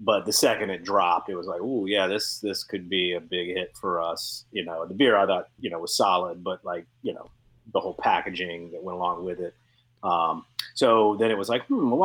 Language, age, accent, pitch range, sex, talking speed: English, 30-49, American, 90-120 Hz, male, 250 wpm